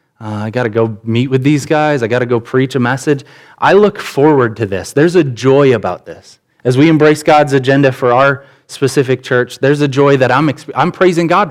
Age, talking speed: 20-39, 225 wpm